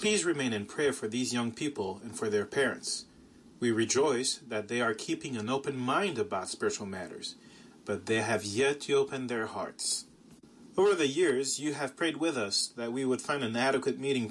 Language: English